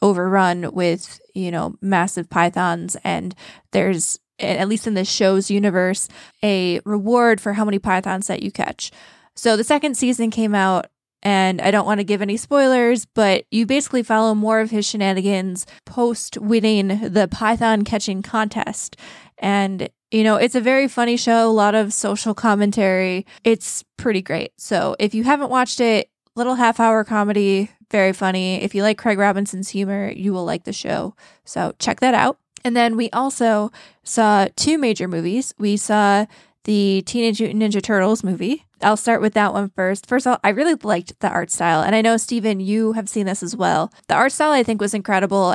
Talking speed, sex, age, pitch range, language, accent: 185 wpm, female, 20-39, 195-230 Hz, English, American